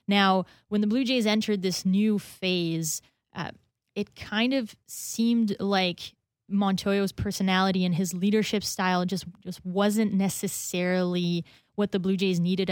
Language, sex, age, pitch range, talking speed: English, female, 20-39, 180-210 Hz, 140 wpm